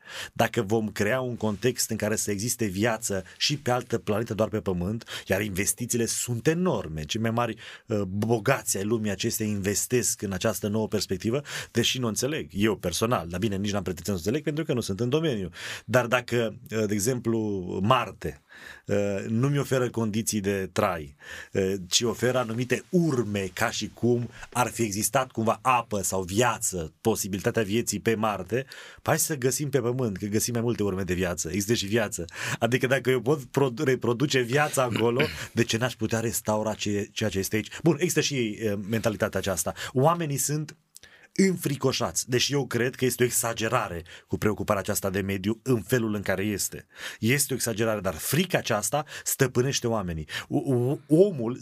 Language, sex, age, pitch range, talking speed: Romanian, male, 30-49, 105-130 Hz, 175 wpm